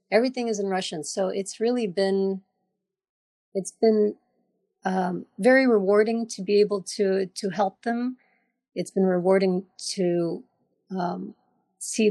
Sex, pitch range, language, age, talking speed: female, 175-205 Hz, English, 40-59, 135 wpm